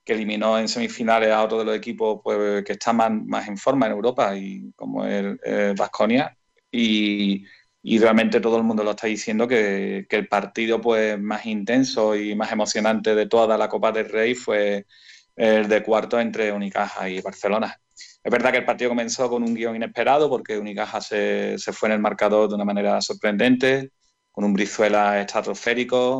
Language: Spanish